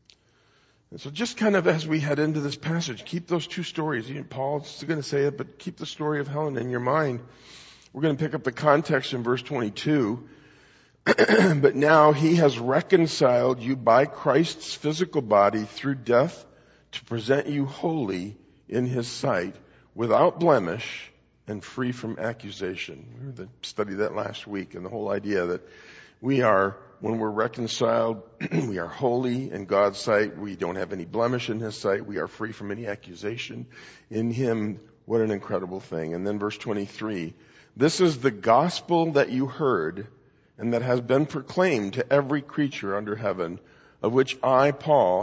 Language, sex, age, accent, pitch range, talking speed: English, male, 50-69, American, 110-150 Hz, 175 wpm